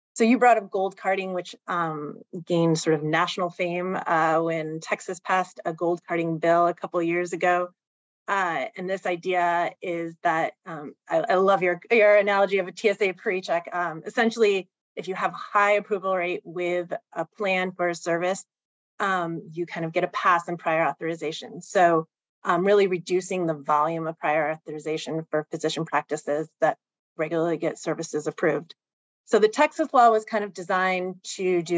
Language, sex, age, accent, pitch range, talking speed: English, female, 30-49, American, 160-185 Hz, 175 wpm